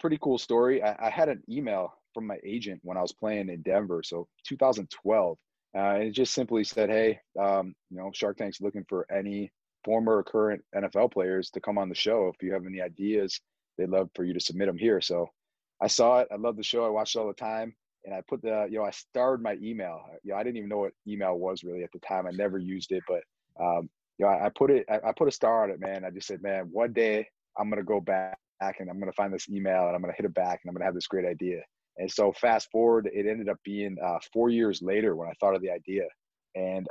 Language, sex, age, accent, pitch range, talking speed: English, male, 30-49, American, 95-110 Hz, 270 wpm